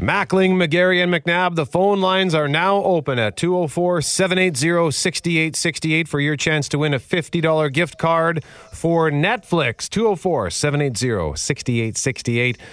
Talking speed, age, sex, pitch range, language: 130 wpm, 40-59, male, 120-170 Hz, English